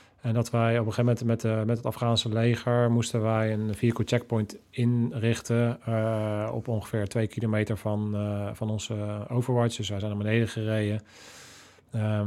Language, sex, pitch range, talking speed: Dutch, male, 110-120 Hz, 170 wpm